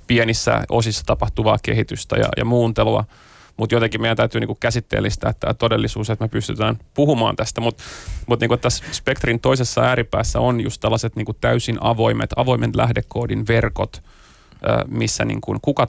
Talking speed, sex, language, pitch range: 145 wpm, male, Finnish, 110-120 Hz